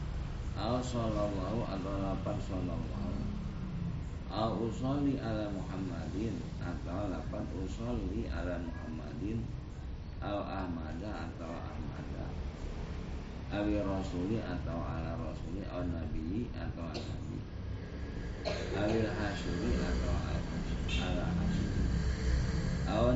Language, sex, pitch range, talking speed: Indonesian, male, 80-110 Hz, 90 wpm